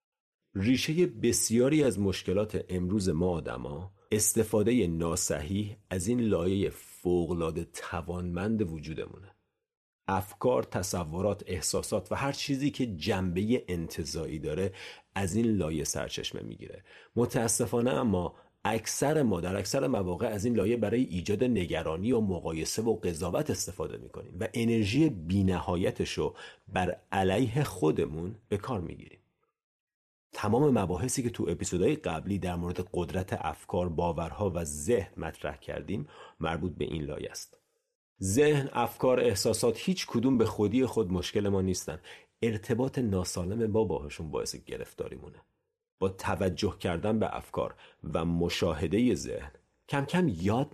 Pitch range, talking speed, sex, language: 90-125 Hz, 130 wpm, male, Persian